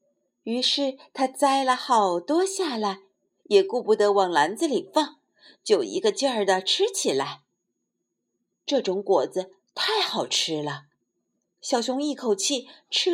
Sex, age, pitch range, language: female, 50-69, 195-295 Hz, Chinese